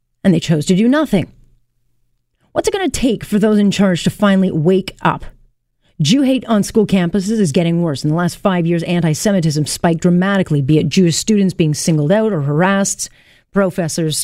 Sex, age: female, 40-59